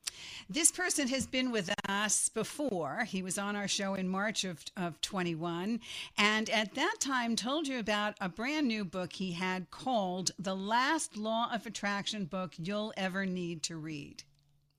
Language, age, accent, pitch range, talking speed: English, 50-69, American, 175-210 Hz, 170 wpm